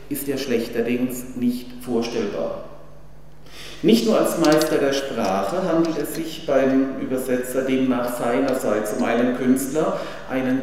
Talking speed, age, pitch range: 125 wpm, 50-69, 120-145 Hz